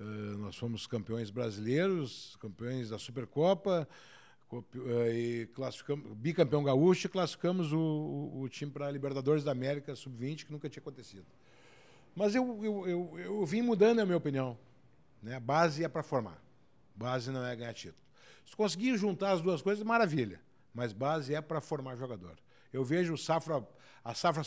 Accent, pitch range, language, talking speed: Brazilian, 125-160 Hz, Portuguese, 160 wpm